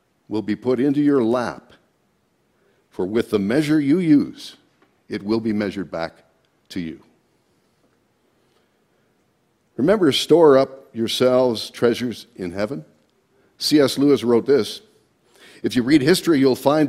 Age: 60-79